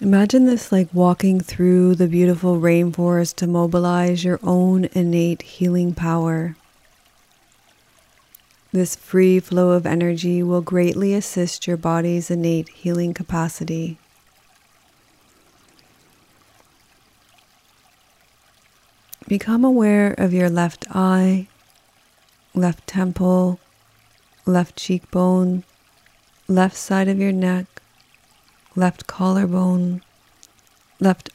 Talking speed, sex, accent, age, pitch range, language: 90 wpm, female, American, 30-49, 175-185 Hz, English